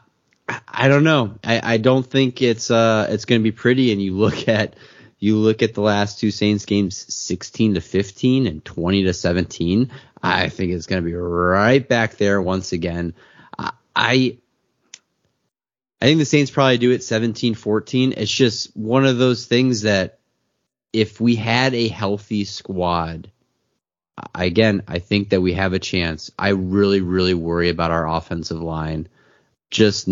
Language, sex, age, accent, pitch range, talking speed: English, male, 30-49, American, 90-120 Hz, 165 wpm